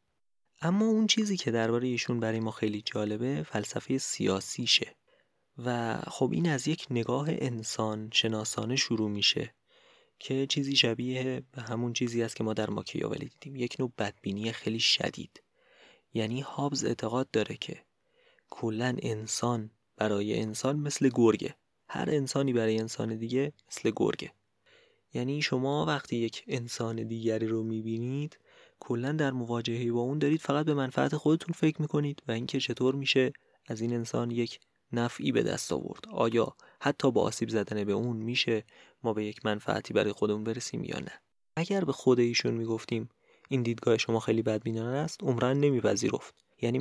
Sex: male